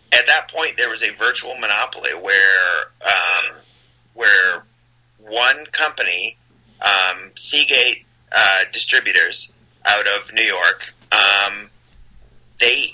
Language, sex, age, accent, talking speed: English, male, 30-49, American, 105 wpm